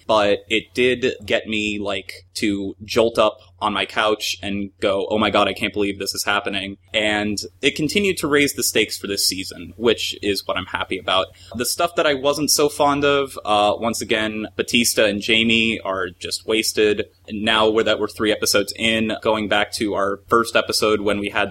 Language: English